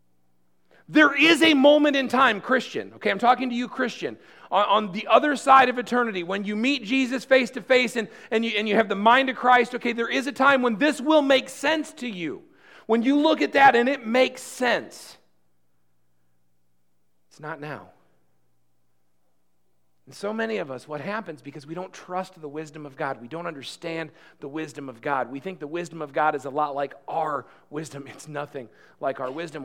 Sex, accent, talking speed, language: male, American, 190 wpm, English